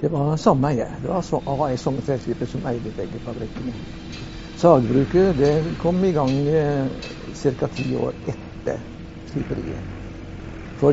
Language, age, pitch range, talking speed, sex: English, 60-79, 115-155 Hz, 120 wpm, male